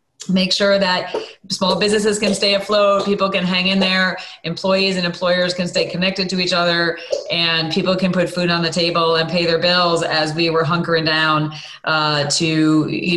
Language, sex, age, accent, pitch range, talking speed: English, female, 30-49, American, 165-185 Hz, 190 wpm